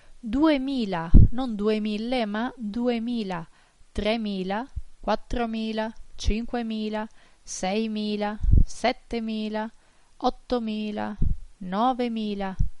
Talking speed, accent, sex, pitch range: 55 wpm, Italian, female, 200-235 Hz